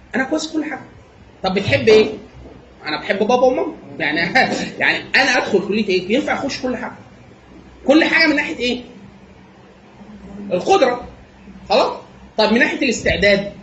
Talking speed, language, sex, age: 140 wpm, Arabic, male, 30-49